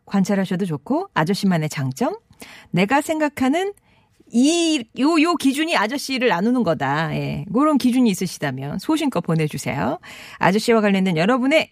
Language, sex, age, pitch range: Korean, female, 40-59, 175-280 Hz